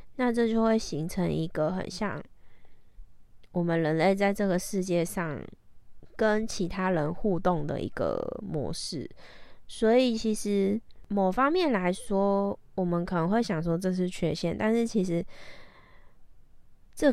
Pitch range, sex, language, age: 170-215 Hz, female, Chinese, 20-39